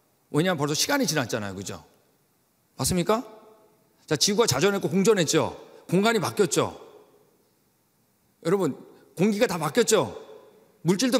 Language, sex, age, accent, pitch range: Korean, male, 40-59, native, 140-225 Hz